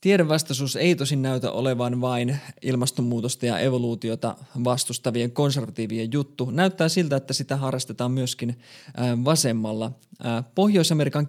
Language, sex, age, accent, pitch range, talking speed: Finnish, male, 20-39, native, 115-140 Hz, 105 wpm